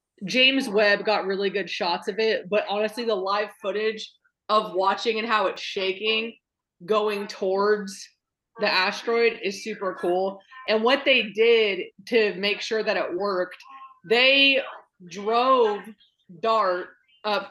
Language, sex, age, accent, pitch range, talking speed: English, female, 20-39, American, 200-260 Hz, 135 wpm